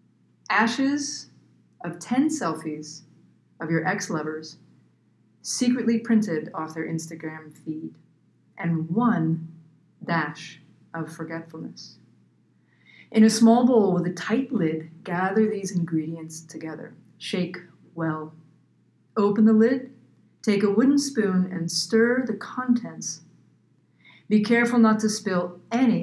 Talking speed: 115 wpm